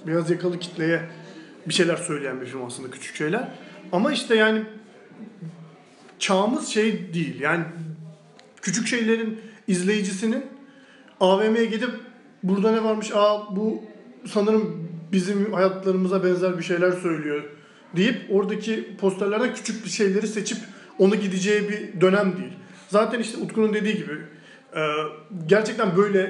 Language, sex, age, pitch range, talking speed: Turkish, male, 40-59, 180-220 Hz, 125 wpm